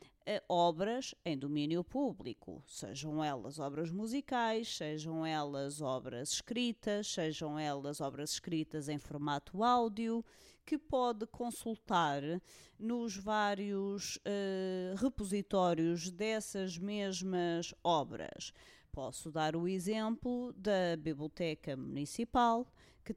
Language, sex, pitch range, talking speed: Portuguese, female, 160-230 Hz, 95 wpm